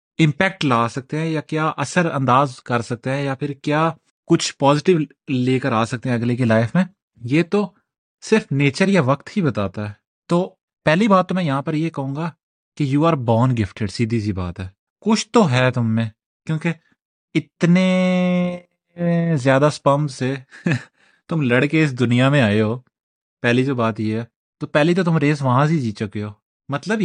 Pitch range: 125-170 Hz